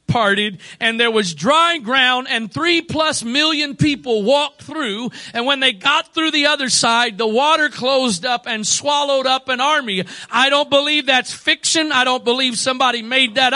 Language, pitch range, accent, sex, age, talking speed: English, 230-310 Hz, American, male, 50-69, 175 wpm